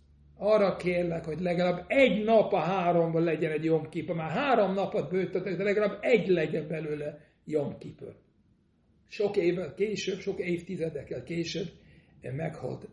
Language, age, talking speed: Hungarian, 60-79, 130 wpm